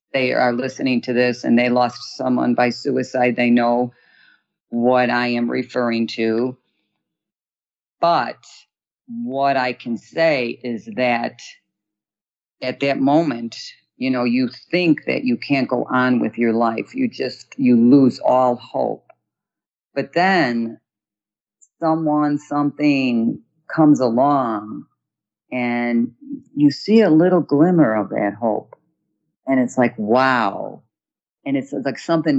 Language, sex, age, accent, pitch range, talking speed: English, female, 40-59, American, 120-145 Hz, 130 wpm